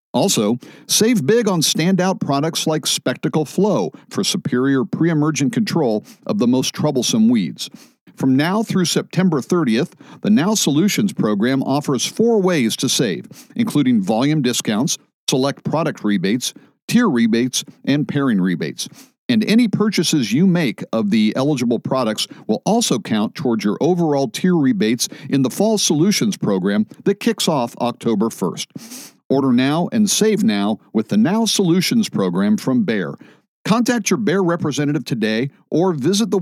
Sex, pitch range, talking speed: male, 140-210 Hz, 150 wpm